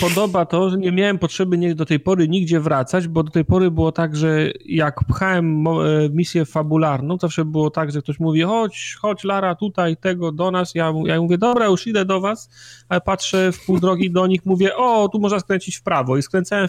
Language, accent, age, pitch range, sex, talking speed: Polish, native, 30-49, 140-180 Hz, male, 215 wpm